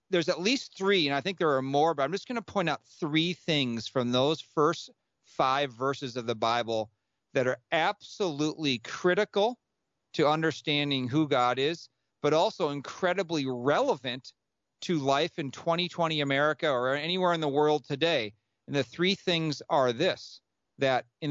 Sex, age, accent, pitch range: male, 40-59, American, 130-170 Hz